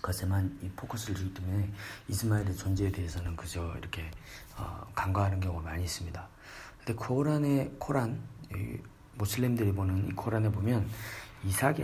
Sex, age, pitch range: male, 40-59, 95-110 Hz